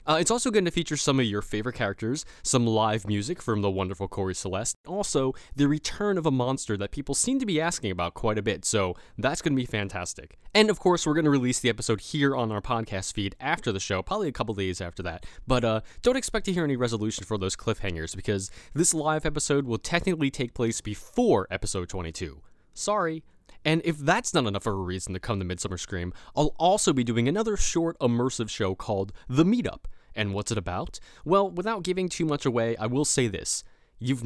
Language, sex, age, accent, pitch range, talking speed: English, male, 20-39, American, 100-145 Hz, 220 wpm